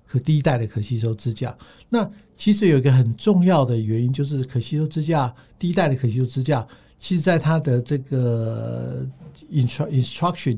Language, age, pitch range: Chinese, 60-79, 120-160 Hz